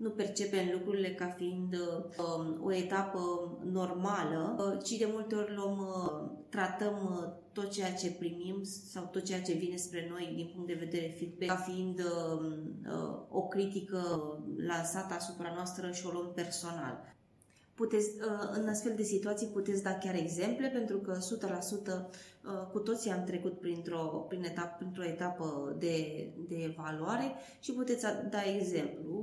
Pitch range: 160-195 Hz